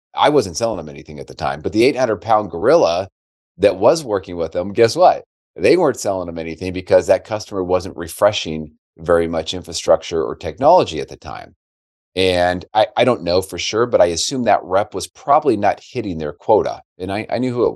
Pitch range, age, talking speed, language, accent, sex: 90-115 Hz, 40-59, 210 wpm, English, American, male